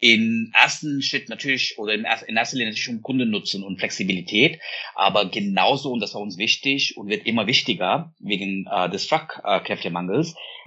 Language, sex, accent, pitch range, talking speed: German, male, German, 110-145 Hz, 175 wpm